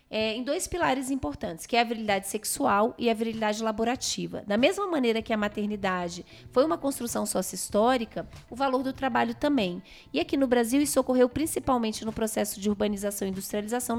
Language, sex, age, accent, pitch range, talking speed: Portuguese, female, 20-39, Brazilian, 205-260 Hz, 185 wpm